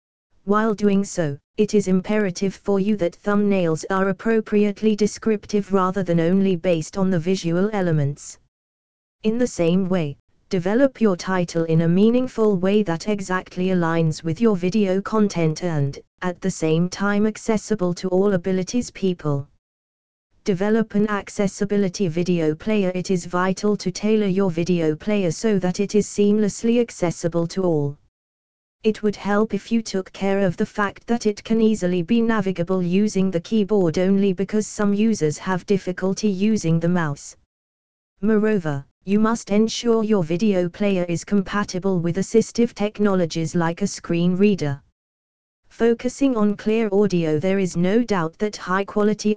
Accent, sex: British, female